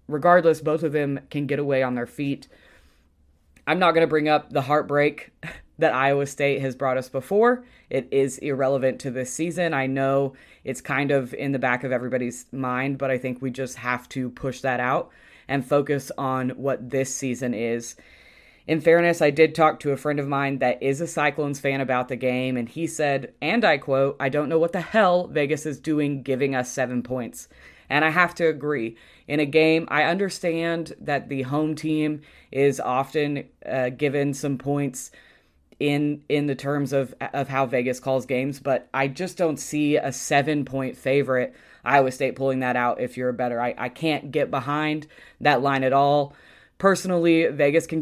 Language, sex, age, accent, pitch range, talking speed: English, female, 20-39, American, 130-155 Hz, 195 wpm